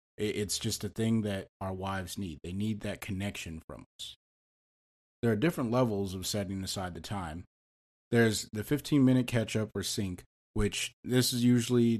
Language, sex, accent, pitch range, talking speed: English, male, American, 95-115 Hz, 165 wpm